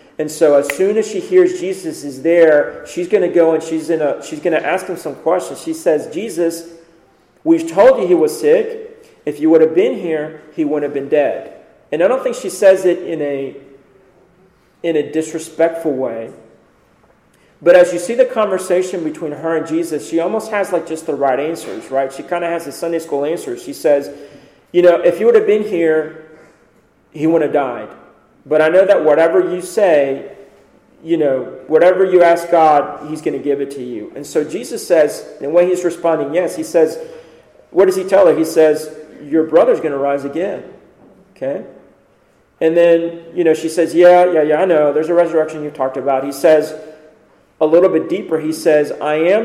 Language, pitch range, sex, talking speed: English, 155-190 Hz, male, 205 wpm